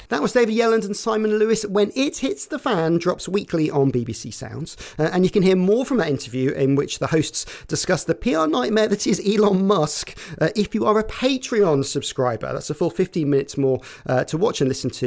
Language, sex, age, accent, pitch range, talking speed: English, male, 40-59, British, 140-205 Hz, 225 wpm